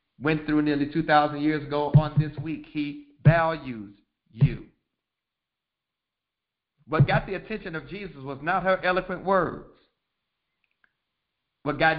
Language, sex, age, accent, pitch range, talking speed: English, male, 50-69, American, 115-160 Hz, 125 wpm